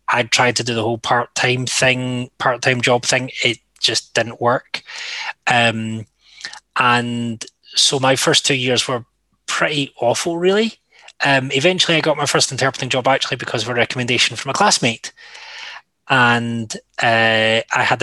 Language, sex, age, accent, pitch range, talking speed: English, male, 20-39, British, 120-140 Hz, 155 wpm